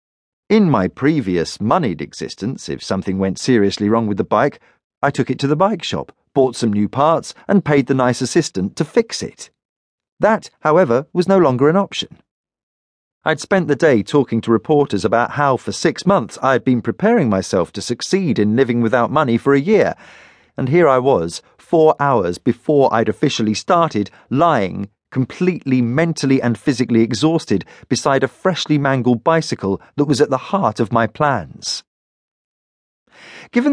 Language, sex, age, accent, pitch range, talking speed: English, male, 40-59, British, 110-150 Hz, 165 wpm